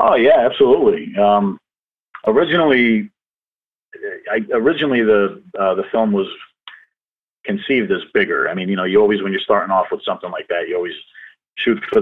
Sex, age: male, 40-59